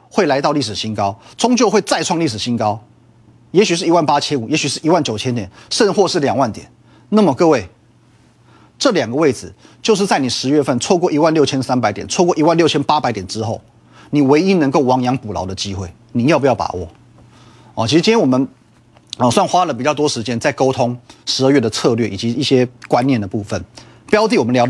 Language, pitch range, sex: Chinese, 115-145 Hz, male